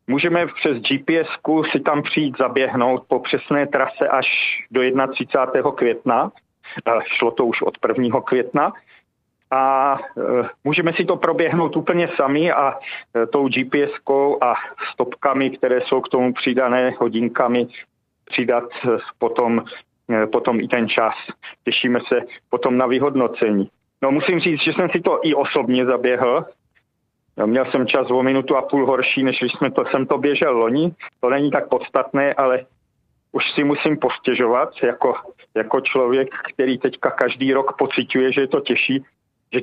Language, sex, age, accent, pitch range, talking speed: Czech, male, 40-59, native, 125-150 Hz, 145 wpm